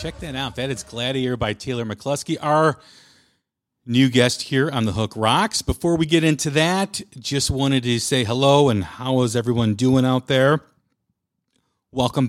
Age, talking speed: 40-59, 170 wpm